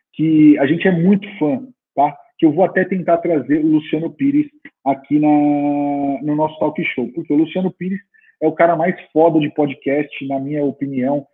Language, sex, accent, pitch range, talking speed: Portuguese, male, Brazilian, 145-190 Hz, 190 wpm